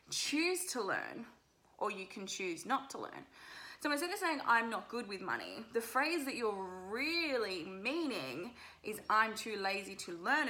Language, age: English, 20-39